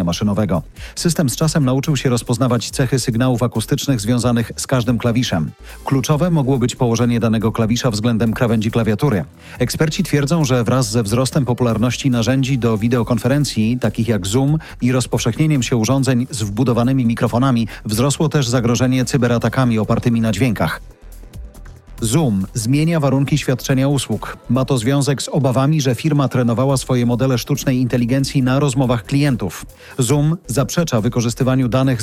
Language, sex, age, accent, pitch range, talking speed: Polish, male, 40-59, native, 120-135 Hz, 140 wpm